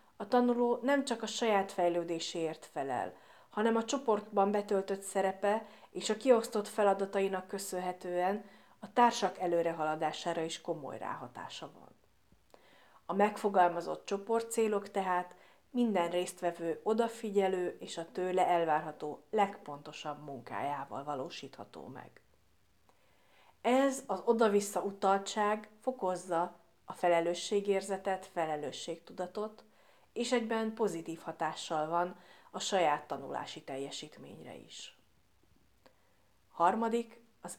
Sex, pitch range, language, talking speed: female, 170-210 Hz, Hungarian, 95 wpm